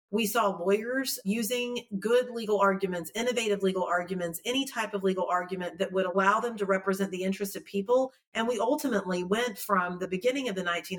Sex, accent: female, American